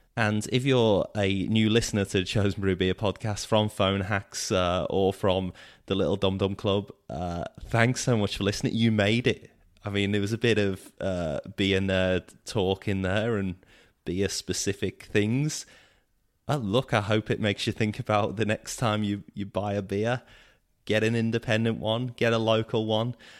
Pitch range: 95-115 Hz